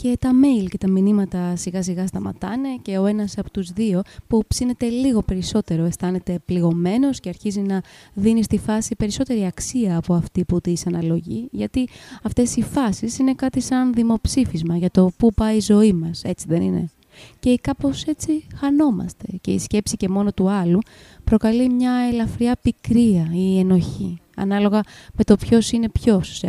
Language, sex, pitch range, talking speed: Greek, female, 180-230 Hz, 170 wpm